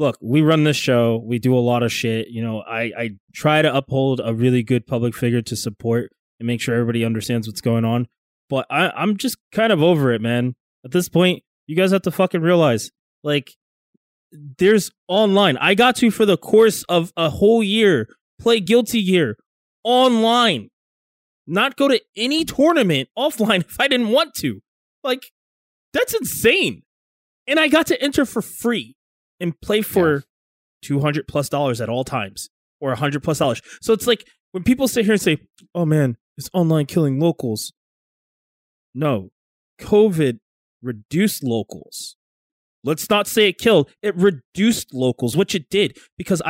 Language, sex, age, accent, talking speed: English, male, 20-39, American, 170 wpm